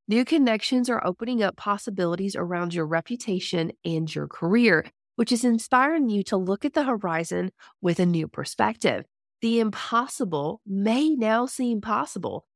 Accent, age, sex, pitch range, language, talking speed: American, 30-49, female, 175-240 Hz, English, 150 wpm